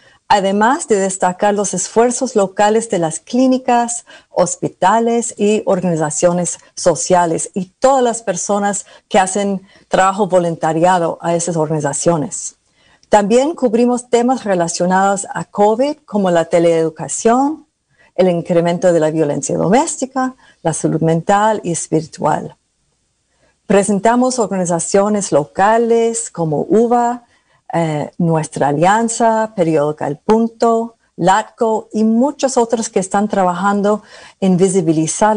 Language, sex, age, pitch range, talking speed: English, female, 50-69, 170-230 Hz, 110 wpm